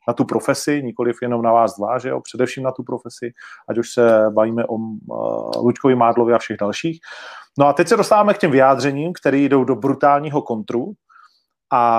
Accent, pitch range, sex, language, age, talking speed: native, 120-145 Hz, male, Czech, 40-59, 185 wpm